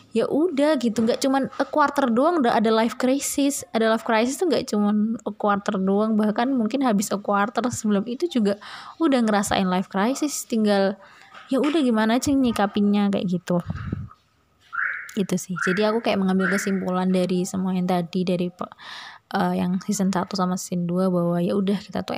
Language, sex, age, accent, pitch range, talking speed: Indonesian, female, 20-39, native, 180-220 Hz, 170 wpm